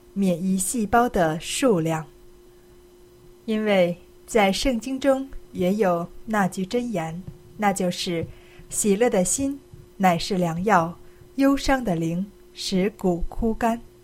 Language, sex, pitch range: Chinese, female, 175-230 Hz